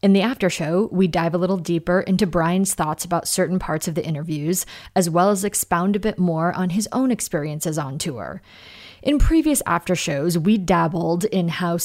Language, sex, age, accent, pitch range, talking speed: English, female, 30-49, American, 170-205 Hz, 200 wpm